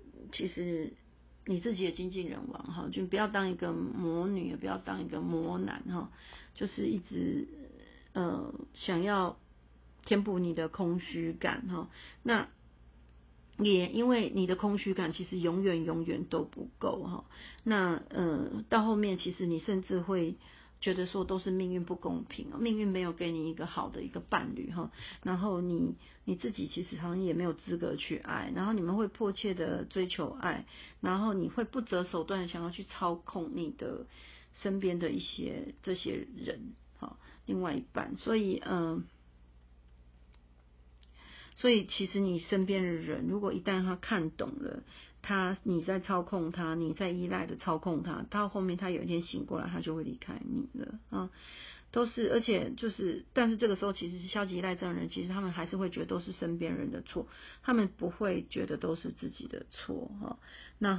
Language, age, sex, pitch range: Chinese, 40-59, female, 165-205 Hz